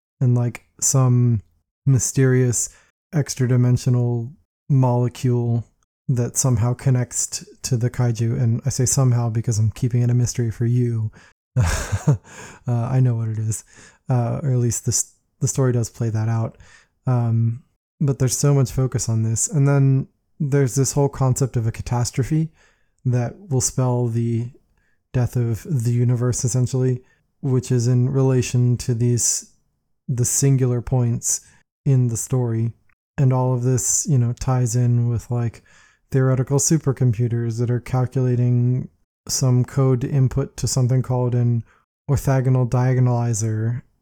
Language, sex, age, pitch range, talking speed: English, male, 20-39, 115-130 Hz, 145 wpm